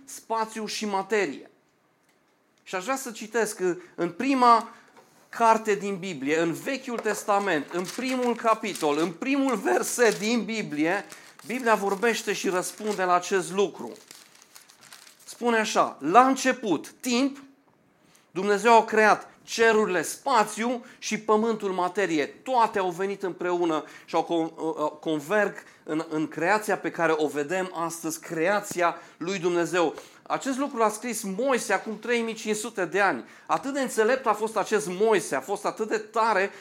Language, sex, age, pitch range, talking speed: Romanian, male, 40-59, 185-230 Hz, 135 wpm